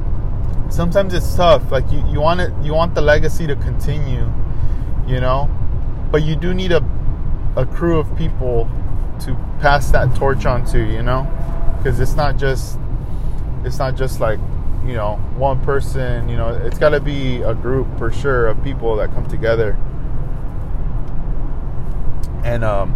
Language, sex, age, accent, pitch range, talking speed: English, male, 20-39, American, 110-130 Hz, 160 wpm